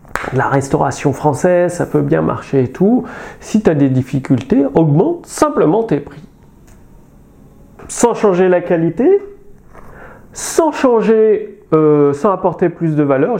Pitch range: 145-240 Hz